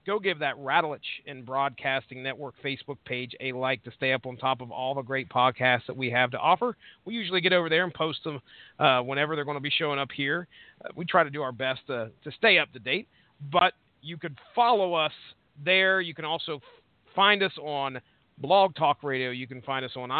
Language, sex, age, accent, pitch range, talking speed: English, male, 40-59, American, 135-175 Hz, 225 wpm